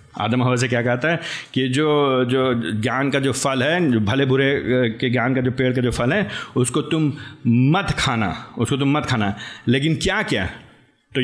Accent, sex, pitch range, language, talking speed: native, male, 125-165 Hz, Hindi, 190 wpm